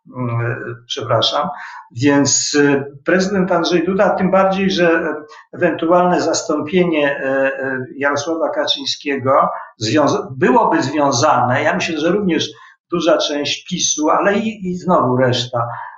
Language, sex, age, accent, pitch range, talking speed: Polish, male, 50-69, native, 140-180 Hz, 100 wpm